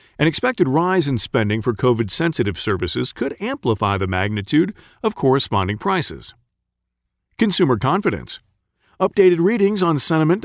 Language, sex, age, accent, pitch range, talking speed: English, male, 40-59, American, 110-175 Hz, 120 wpm